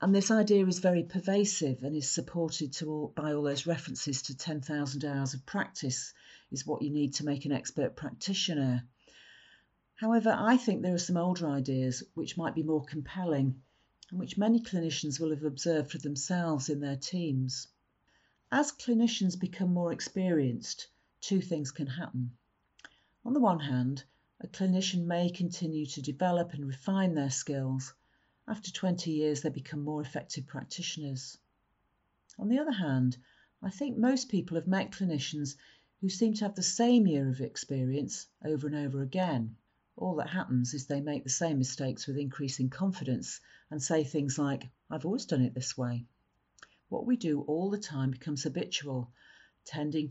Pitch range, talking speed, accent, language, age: 135-180 Hz, 170 wpm, British, English, 50-69